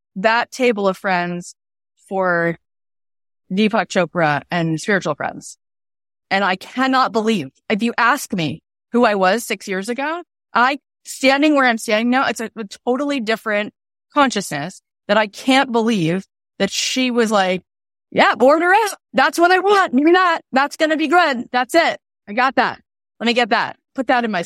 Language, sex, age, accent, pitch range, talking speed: English, female, 30-49, American, 185-275 Hz, 170 wpm